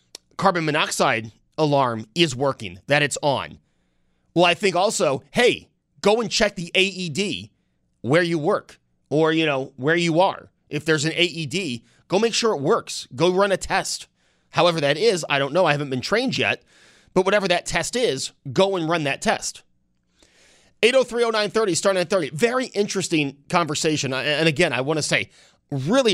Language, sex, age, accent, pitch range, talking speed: English, male, 30-49, American, 140-180 Hz, 170 wpm